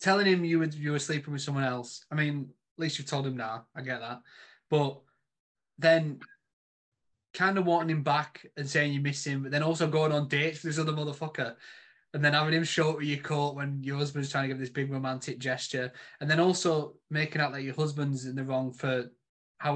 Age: 20-39